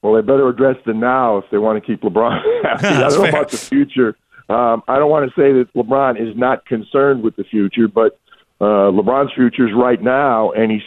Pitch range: 110-130 Hz